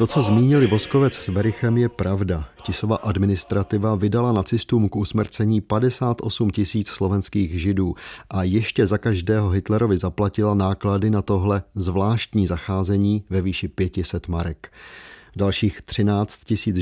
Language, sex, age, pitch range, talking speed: Czech, male, 40-59, 95-110 Hz, 130 wpm